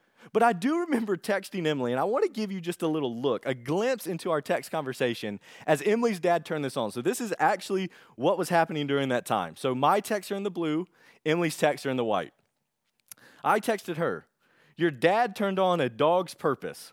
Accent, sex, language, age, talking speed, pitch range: American, male, English, 30-49, 215 wpm, 140-205 Hz